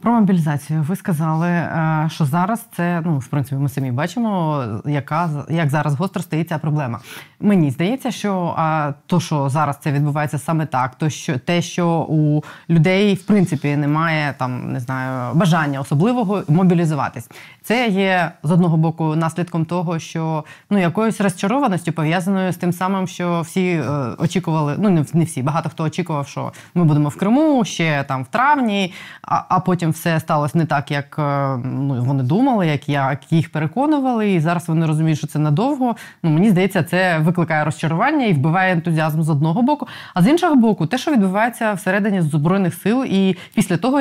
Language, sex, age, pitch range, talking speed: Ukrainian, female, 20-39, 150-190 Hz, 170 wpm